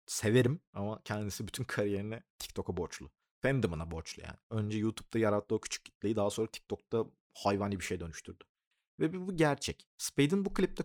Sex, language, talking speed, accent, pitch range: male, Turkish, 155 wpm, native, 100-130 Hz